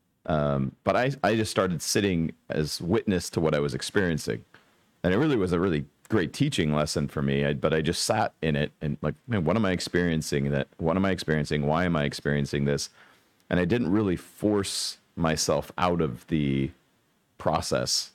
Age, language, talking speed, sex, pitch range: 40-59, English, 195 wpm, male, 70-90 Hz